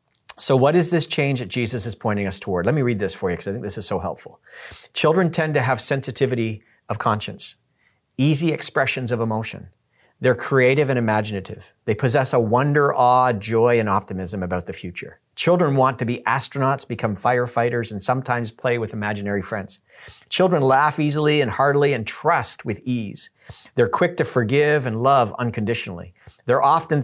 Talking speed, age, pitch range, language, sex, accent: 180 wpm, 40-59, 110-140 Hz, English, male, American